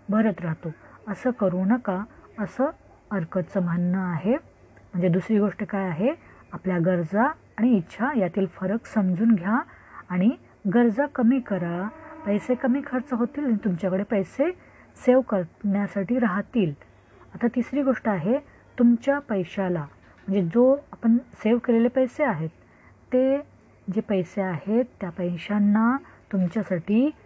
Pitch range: 185-240 Hz